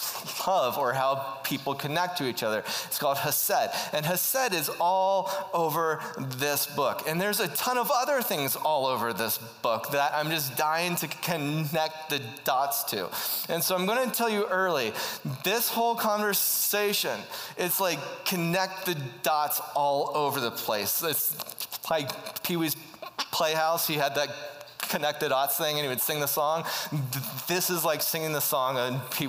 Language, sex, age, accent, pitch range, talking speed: English, male, 30-49, American, 140-180 Hz, 170 wpm